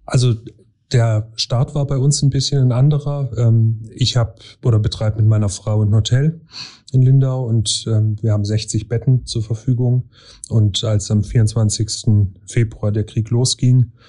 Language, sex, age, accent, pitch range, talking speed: German, male, 30-49, German, 105-120 Hz, 155 wpm